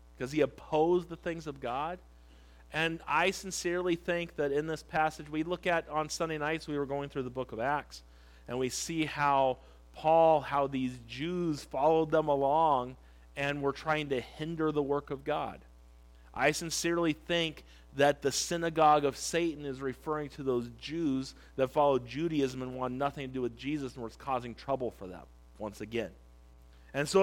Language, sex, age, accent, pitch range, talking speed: English, male, 40-59, American, 130-170 Hz, 180 wpm